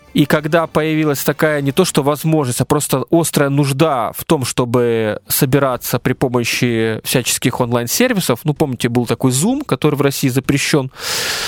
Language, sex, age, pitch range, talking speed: Russian, male, 20-39, 125-165 Hz, 150 wpm